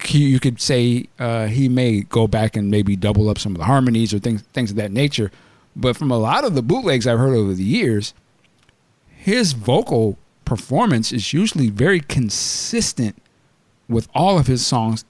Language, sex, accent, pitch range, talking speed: English, male, American, 115-150 Hz, 185 wpm